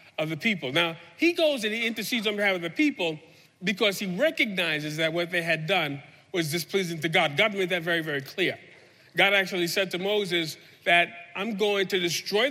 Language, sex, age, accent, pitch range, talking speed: English, male, 40-59, American, 160-210 Hz, 200 wpm